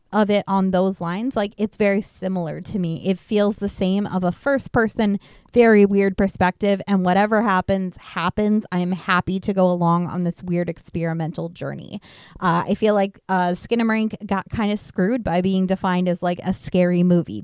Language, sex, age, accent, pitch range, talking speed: English, female, 20-39, American, 180-220 Hz, 190 wpm